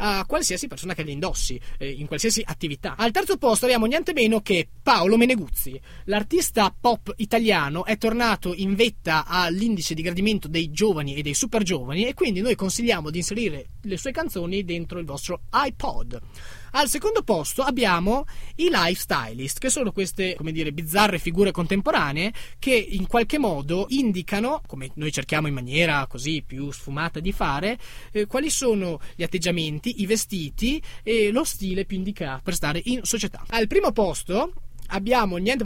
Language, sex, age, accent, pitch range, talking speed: Italian, male, 20-39, native, 165-235 Hz, 165 wpm